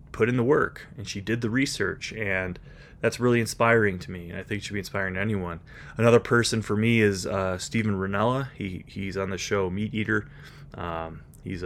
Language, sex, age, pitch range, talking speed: English, male, 30-49, 95-115 Hz, 210 wpm